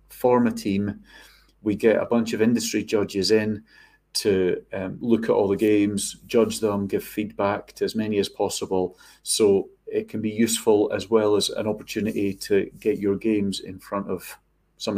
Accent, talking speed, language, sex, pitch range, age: British, 180 wpm, English, male, 100-120 Hz, 40-59